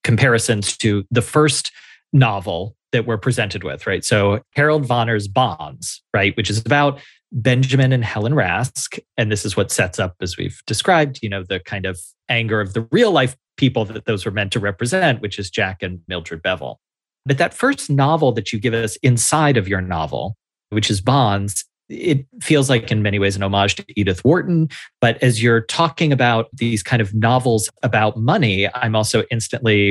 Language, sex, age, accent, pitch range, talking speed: English, male, 30-49, American, 105-125 Hz, 190 wpm